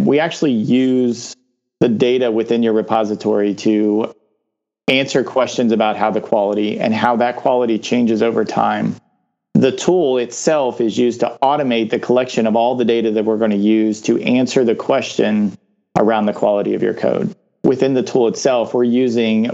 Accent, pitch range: American, 110-135 Hz